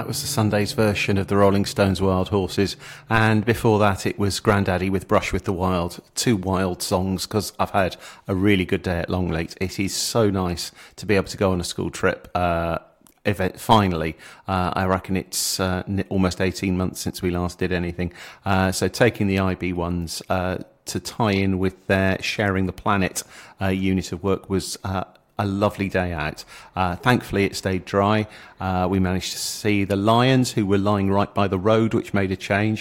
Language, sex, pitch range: English, male, 95-110 Hz